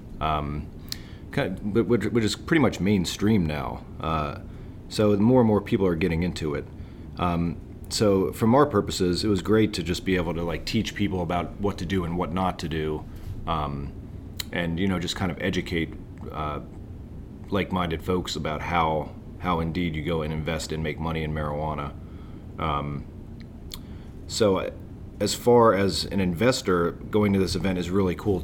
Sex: male